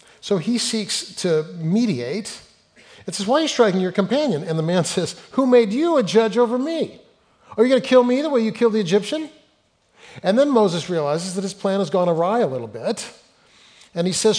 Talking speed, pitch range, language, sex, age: 215 wpm, 170-235 Hz, English, male, 40-59